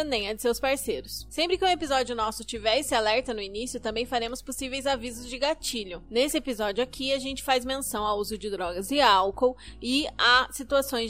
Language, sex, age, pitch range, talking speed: Portuguese, female, 20-39, 225-280 Hz, 200 wpm